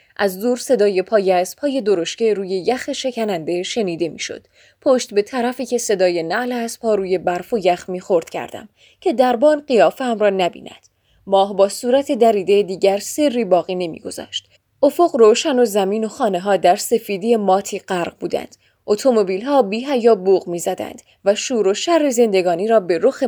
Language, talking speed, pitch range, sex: Persian, 175 wpm, 190-250 Hz, female